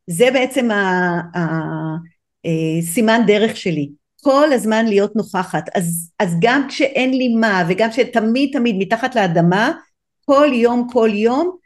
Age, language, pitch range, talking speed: 50-69, Hebrew, 185-230 Hz, 125 wpm